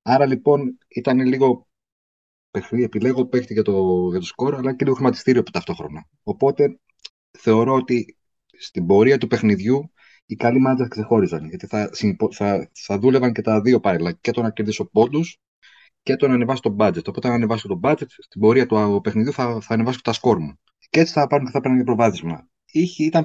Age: 30-49